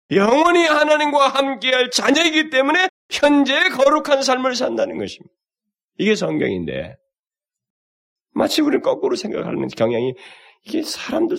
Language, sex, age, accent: Korean, male, 30-49, native